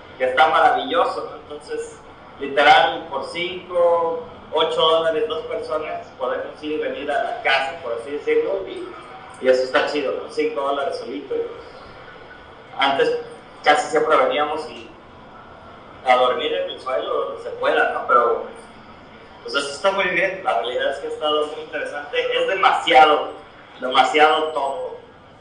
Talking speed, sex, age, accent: 150 wpm, male, 30-49, Mexican